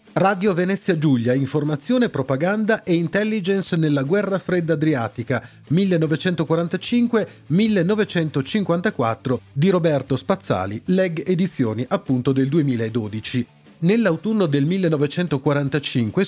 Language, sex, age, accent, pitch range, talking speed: Italian, male, 30-49, native, 130-190 Hz, 85 wpm